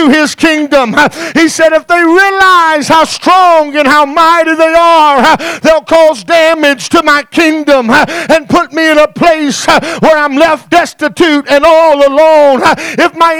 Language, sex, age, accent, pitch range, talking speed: English, male, 50-69, American, 310-345 Hz, 155 wpm